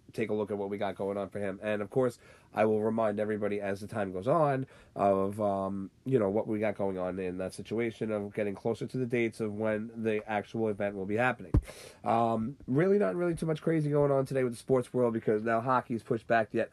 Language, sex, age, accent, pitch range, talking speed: English, male, 30-49, American, 105-125 Hz, 250 wpm